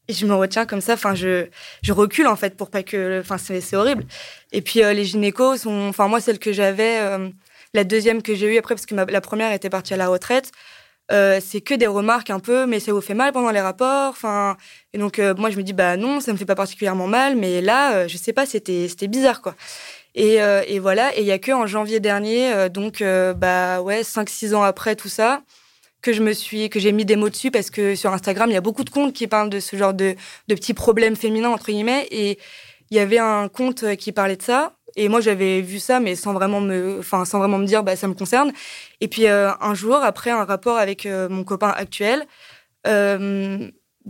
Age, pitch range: 20-39, 195-230 Hz